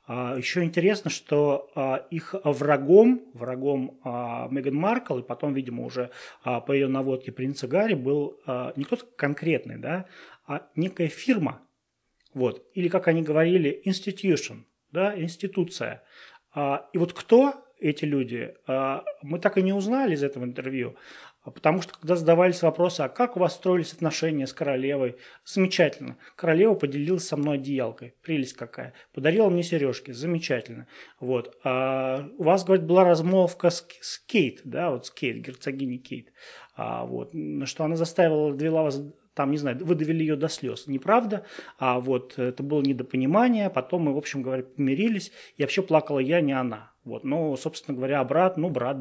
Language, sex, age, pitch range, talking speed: Russian, male, 30-49, 135-180 Hz, 150 wpm